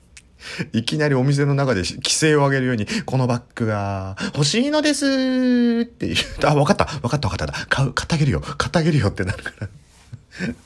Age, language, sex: 40-59, Japanese, male